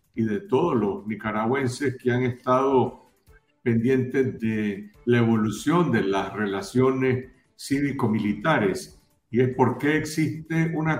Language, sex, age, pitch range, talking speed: Spanish, male, 50-69, 115-145 Hz, 115 wpm